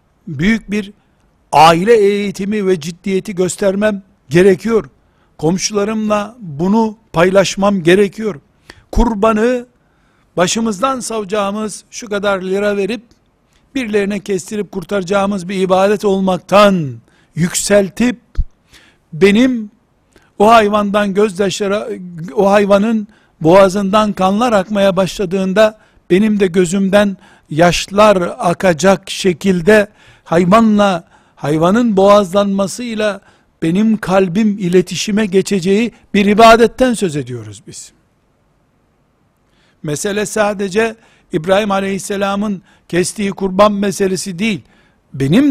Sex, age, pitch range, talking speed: male, 60-79, 185-215 Hz, 85 wpm